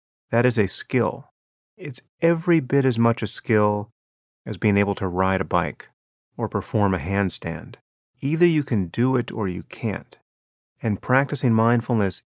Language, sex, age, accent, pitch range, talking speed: English, male, 30-49, American, 90-120 Hz, 160 wpm